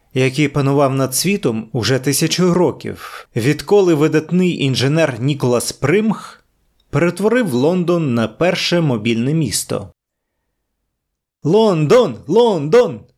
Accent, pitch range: native, 125-170 Hz